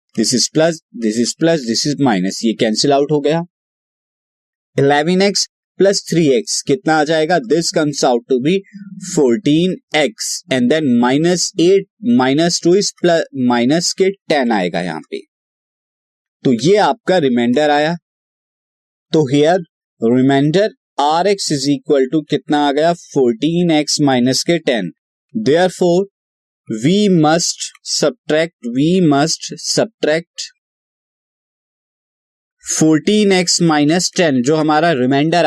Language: Hindi